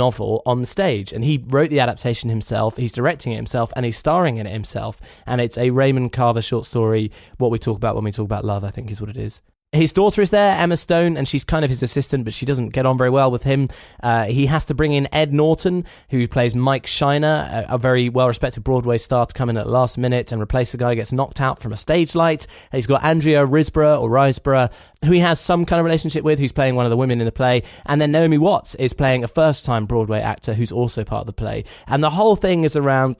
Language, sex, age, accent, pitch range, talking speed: English, male, 20-39, British, 115-145 Hz, 260 wpm